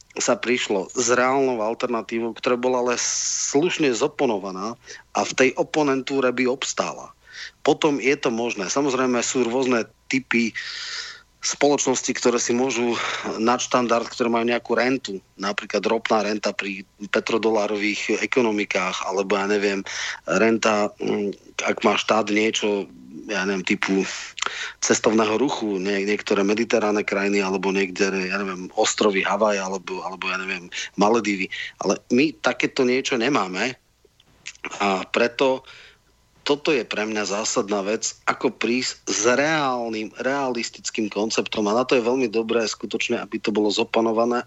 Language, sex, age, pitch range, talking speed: Slovak, male, 40-59, 105-125 Hz, 130 wpm